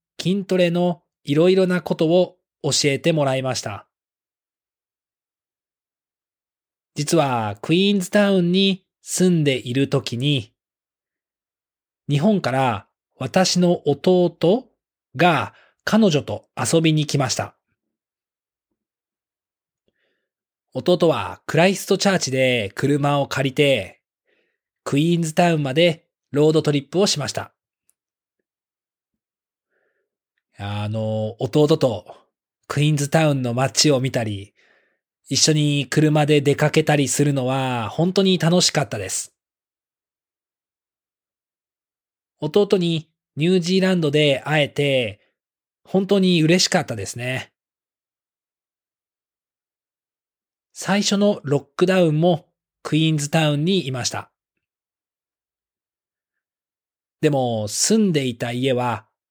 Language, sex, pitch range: English, male, 130-175 Hz